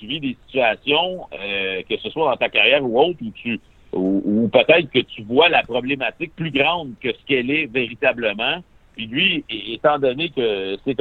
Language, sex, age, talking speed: French, male, 60-79, 195 wpm